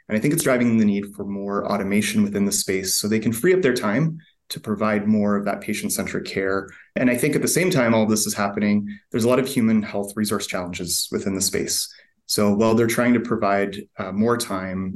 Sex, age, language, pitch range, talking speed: male, 30-49, English, 100-125 Hz, 235 wpm